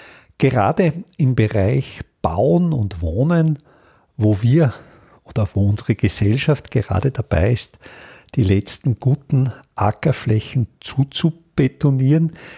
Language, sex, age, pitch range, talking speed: German, male, 50-69, 105-160 Hz, 95 wpm